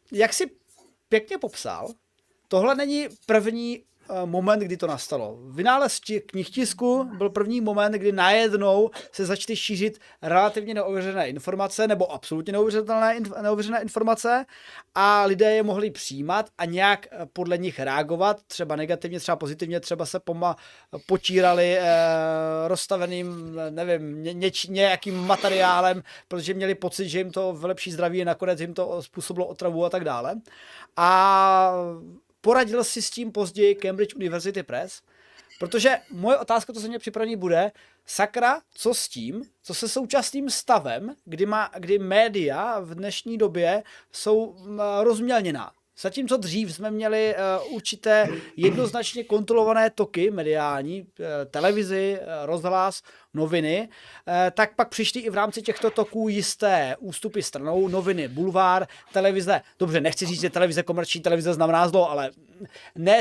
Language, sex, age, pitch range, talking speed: Czech, male, 20-39, 175-215 Hz, 135 wpm